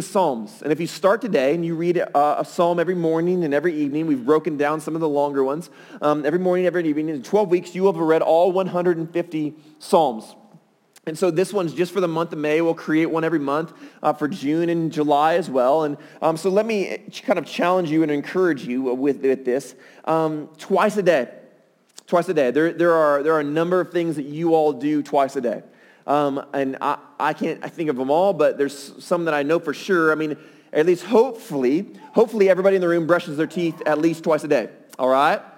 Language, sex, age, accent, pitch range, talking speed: English, male, 30-49, American, 150-180 Hz, 235 wpm